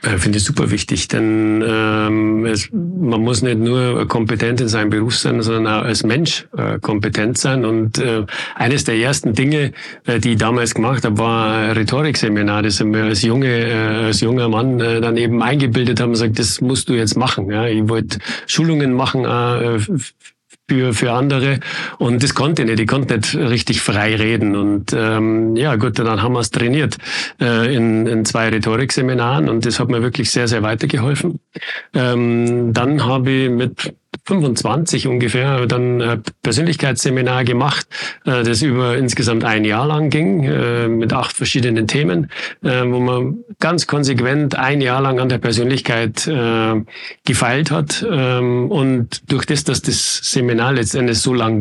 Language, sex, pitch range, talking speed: German, male, 110-130 Hz, 165 wpm